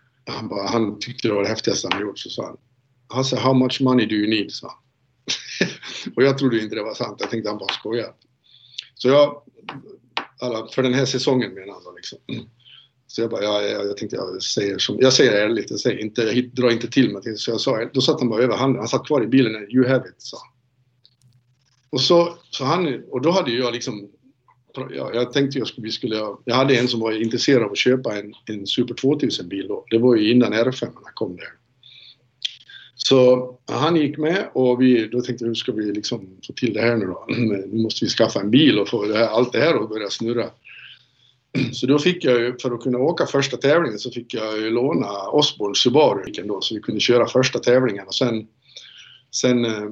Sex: male